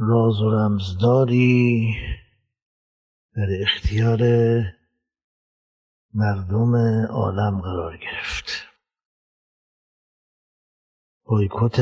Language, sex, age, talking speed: Persian, male, 60-79, 50 wpm